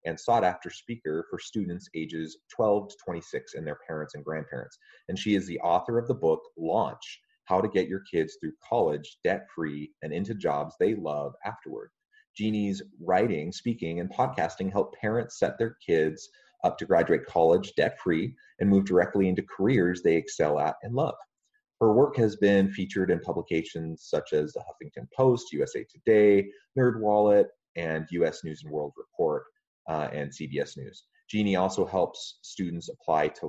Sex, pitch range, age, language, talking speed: male, 80-115 Hz, 30-49, English, 170 wpm